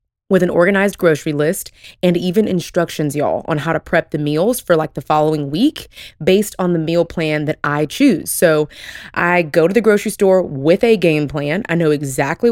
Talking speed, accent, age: 200 wpm, American, 20-39